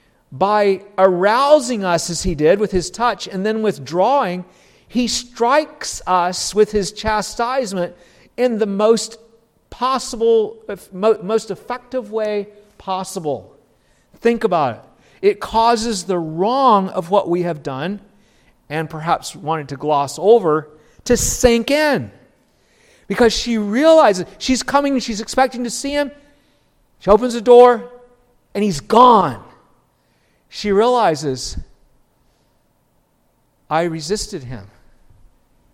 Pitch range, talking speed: 170-235 Hz, 115 wpm